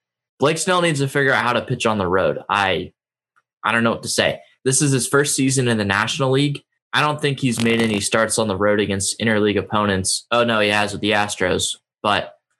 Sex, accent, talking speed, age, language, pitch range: male, American, 235 wpm, 10-29, English, 105-130 Hz